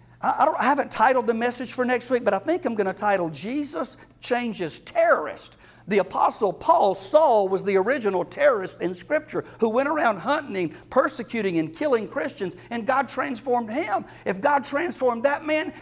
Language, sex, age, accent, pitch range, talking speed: English, male, 60-79, American, 165-235 Hz, 170 wpm